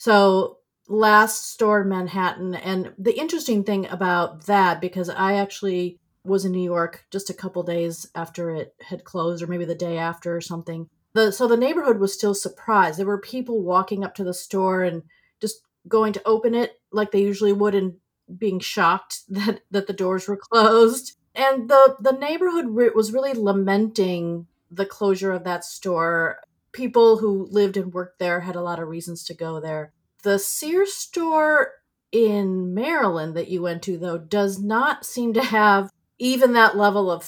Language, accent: English, American